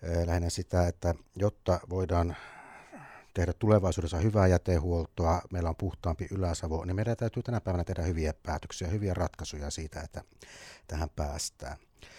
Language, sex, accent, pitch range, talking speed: Finnish, male, native, 85-100 Hz, 135 wpm